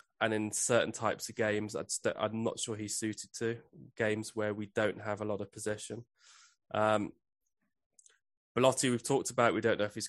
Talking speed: 195 wpm